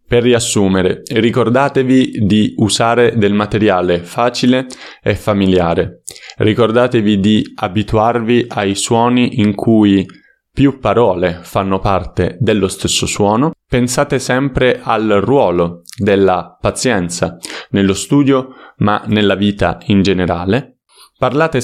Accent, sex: native, male